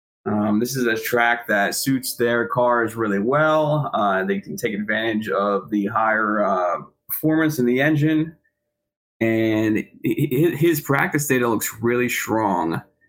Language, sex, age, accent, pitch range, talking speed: English, male, 20-39, American, 115-145 Hz, 140 wpm